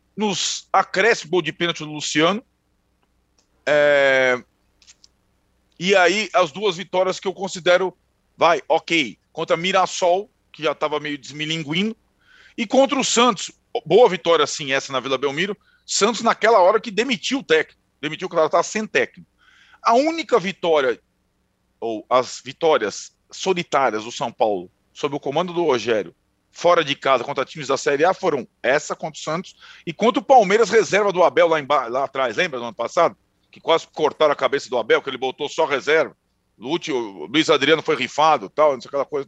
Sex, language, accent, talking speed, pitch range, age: male, Portuguese, Brazilian, 175 wpm, 150-215 Hz, 40-59